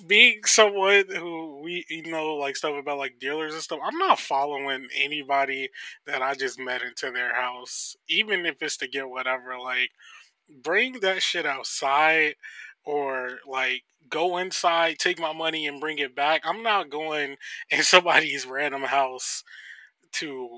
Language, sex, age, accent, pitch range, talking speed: English, male, 20-39, American, 130-170 Hz, 160 wpm